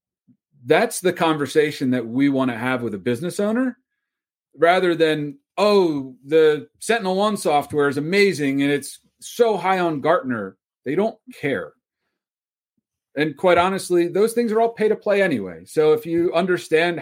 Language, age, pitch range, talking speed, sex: English, 30-49, 140-180 Hz, 160 wpm, male